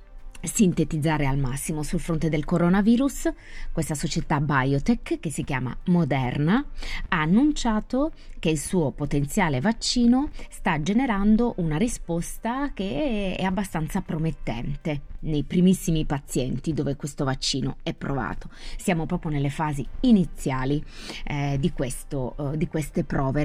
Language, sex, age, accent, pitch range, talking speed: Italian, female, 20-39, native, 140-175 Hz, 125 wpm